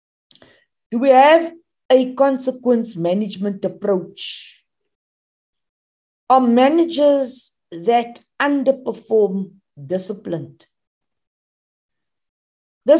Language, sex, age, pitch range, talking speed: English, female, 60-79, 180-270 Hz, 60 wpm